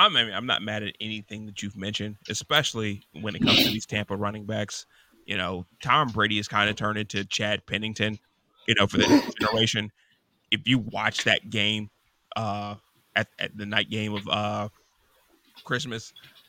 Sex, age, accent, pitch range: male, 20-39, American, 105-115 Hz